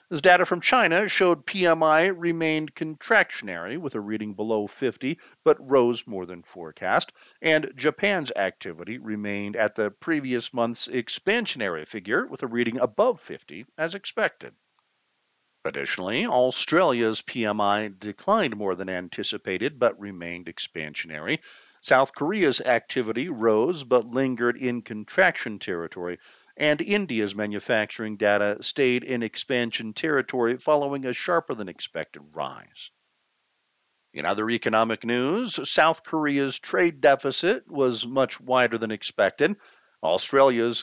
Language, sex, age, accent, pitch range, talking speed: English, male, 50-69, American, 105-140 Hz, 120 wpm